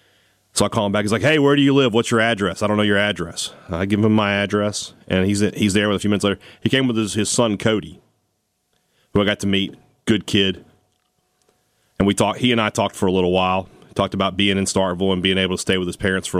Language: English